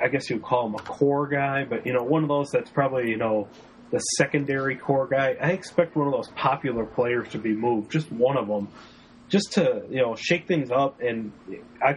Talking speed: 230 wpm